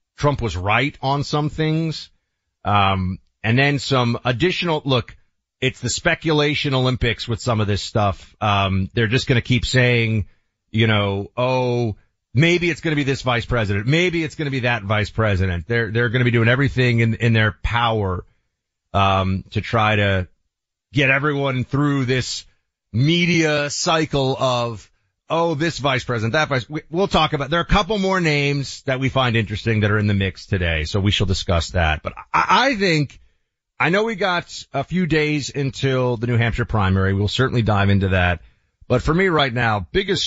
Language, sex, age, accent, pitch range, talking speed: English, male, 30-49, American, 100-145 Hz, 190 wpm